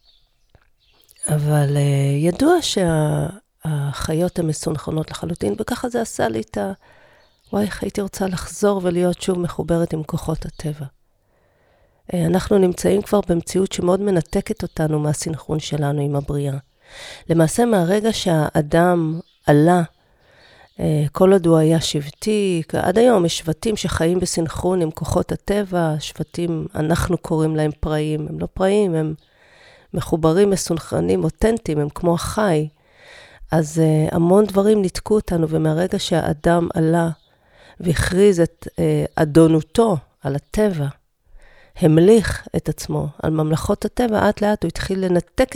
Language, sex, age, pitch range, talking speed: Hebrew, female, 40-59, 155-195 Hz, 125 wpm